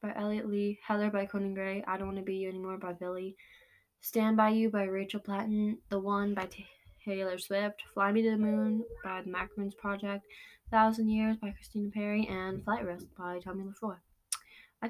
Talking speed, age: 195 wpm, 10-29